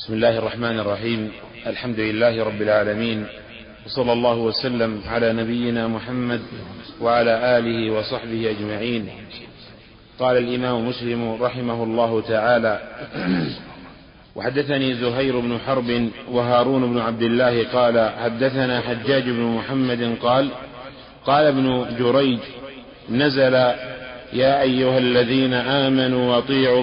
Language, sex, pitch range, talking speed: Arabic, male, 120-135 Hz, 105 wpm